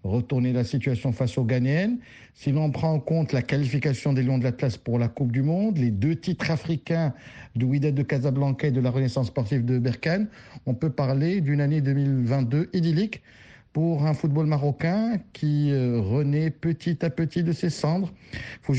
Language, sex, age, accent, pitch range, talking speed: French, male, 50-69, French, 130-165 Hz, 190 wpm